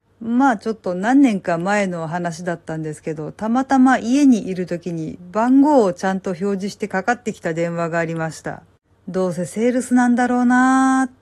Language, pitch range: Japanese, 180-240 Hz